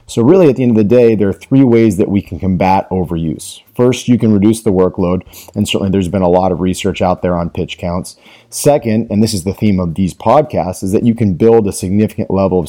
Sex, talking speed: male, 255 wpm